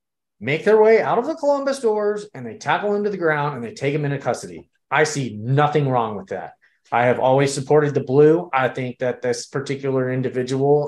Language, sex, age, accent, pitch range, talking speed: English, male, 30-49, American, 125-150 Hz, 215 wpm